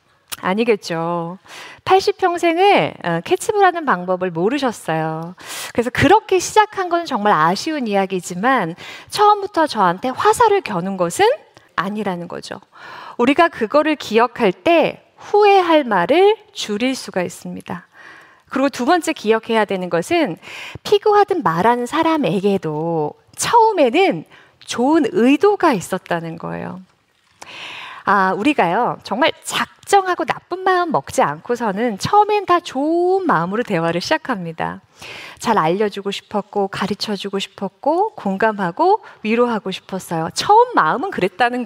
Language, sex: Korean, female